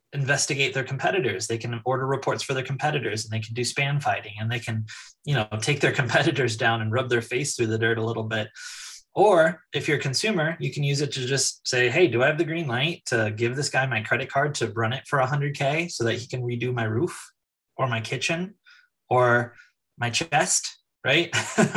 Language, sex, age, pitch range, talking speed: English, male, 20-39, 120-160 Hz, 220 wpm